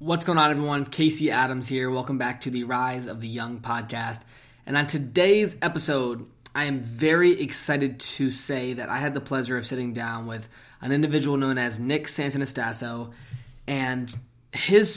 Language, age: English, 20-39